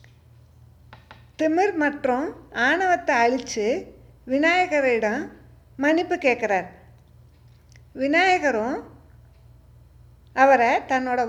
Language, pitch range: Tamil, 235-330 Hz